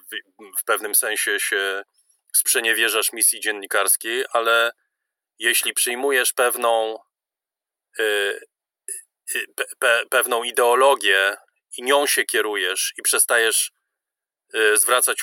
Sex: male